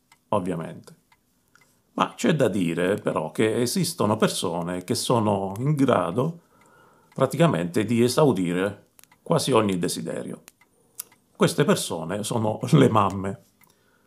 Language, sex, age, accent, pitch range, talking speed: Italian, male, 40-59, native, 105-150 Hz, 100 wpm